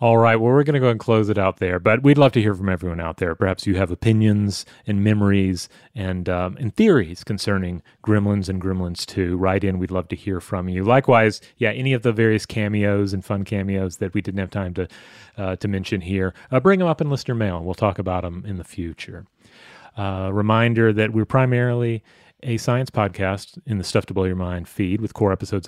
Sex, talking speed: male, 225 wpm